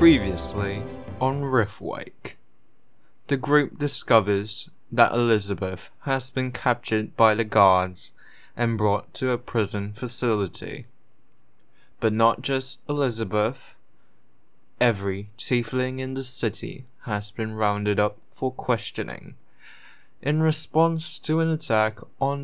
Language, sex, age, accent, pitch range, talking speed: English, male, 20-39, British, 105-130 Hz, 110 wpm